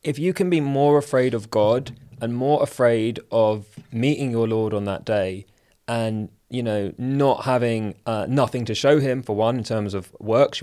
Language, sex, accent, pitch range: English, male, British, 110-140 Hz